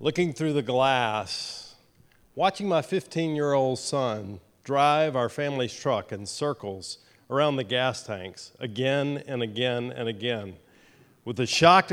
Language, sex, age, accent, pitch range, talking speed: English, male, 40-59, American, 120-155 Hz, 130 wpm